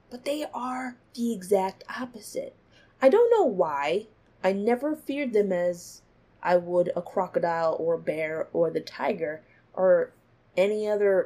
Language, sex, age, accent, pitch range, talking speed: English, female, 20-39, American, 180-255 Hz, 150 wpm